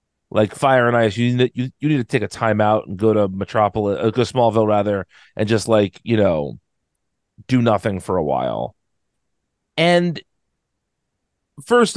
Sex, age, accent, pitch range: male, 30-49, American, 105-135 Hz